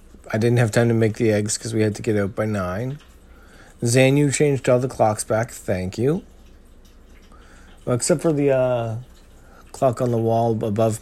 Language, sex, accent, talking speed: English, male, American, 180 wpm